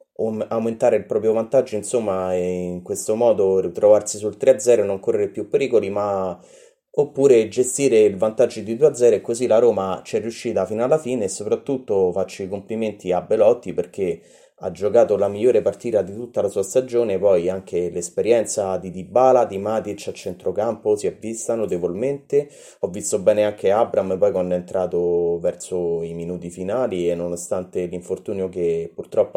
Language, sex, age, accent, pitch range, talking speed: Italian, male, 30-49, native, 90-140 Hz, 170 wpm